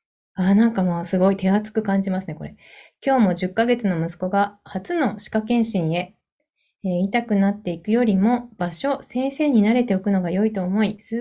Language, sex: Japanese, female